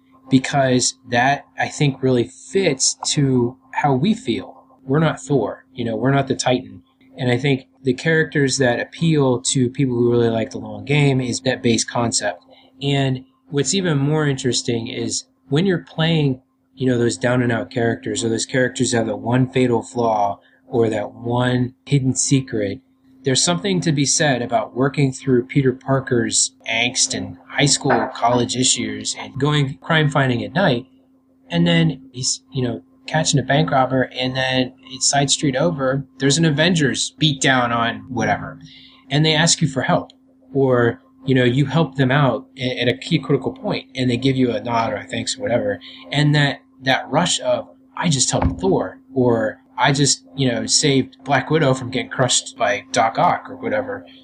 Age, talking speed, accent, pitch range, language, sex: 20-39, 185 wpm, American, 125-145 Hz, English, male